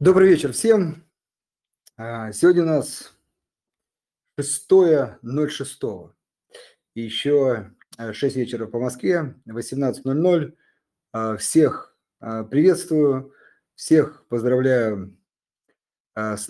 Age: 30-49